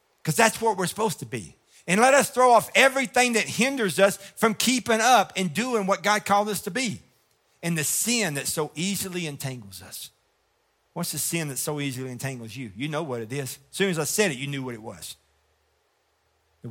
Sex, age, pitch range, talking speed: male, 50-69, 120-180 Hz, 215 wpm